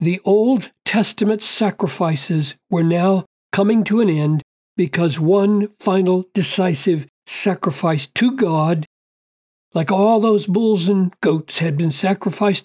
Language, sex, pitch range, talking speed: English, male, 160-200 Hz, 125 wpm